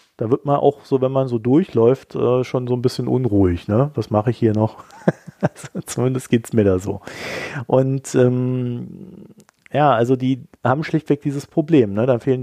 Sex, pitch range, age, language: male, 110-135 Hz, 40-59, German